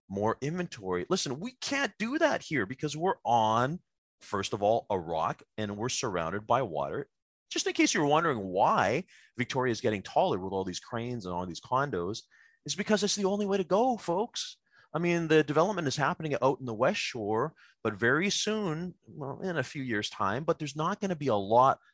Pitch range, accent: 95-160 Hz, American